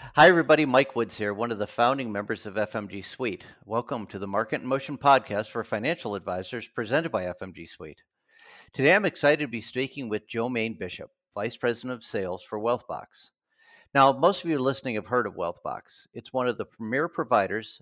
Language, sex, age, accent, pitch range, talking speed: English, male, 50-69, American, 105-135 Hz, 195 wpm